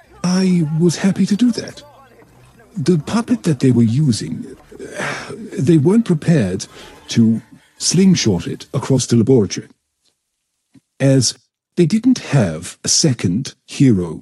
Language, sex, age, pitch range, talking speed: English, male, 50-69, 110-170 Hz, 120 wpm